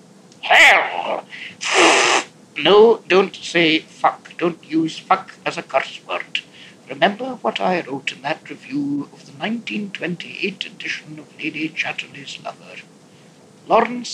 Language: English